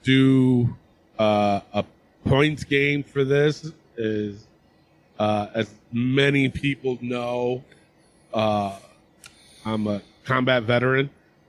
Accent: American